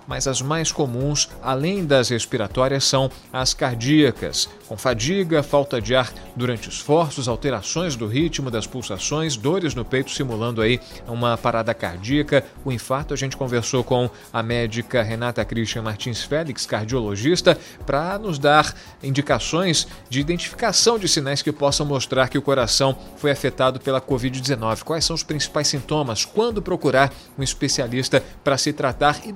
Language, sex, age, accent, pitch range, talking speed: Portuguese, male, 40-59, Brazilian, 125-155 Hz, 150 wpm